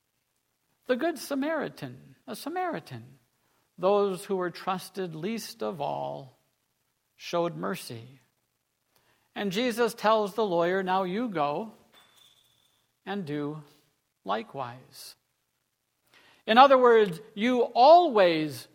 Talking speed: 95 wpm